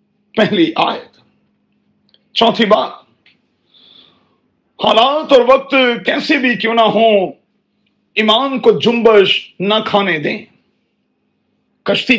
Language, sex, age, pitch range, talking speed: Urdu, male, 40-59, 200-235 Hz, 95 wpm